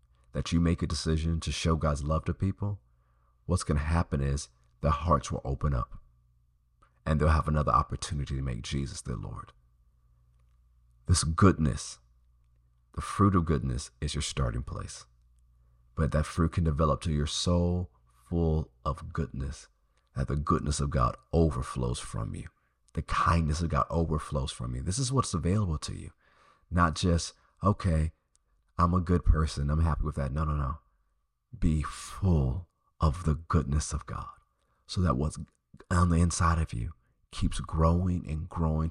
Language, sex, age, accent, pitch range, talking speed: English, male, 40-59, American, 65-85 Hz, 165 wpm